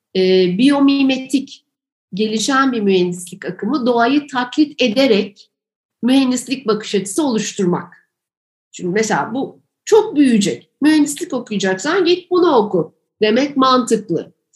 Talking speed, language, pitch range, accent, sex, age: 105 wpm, Turkish, 190-250 Hz, native, female, 50-69